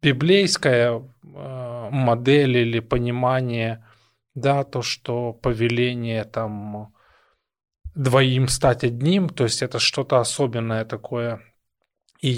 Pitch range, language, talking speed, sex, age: 120-150 Hz, Russian, 95 wpm, male, 20-39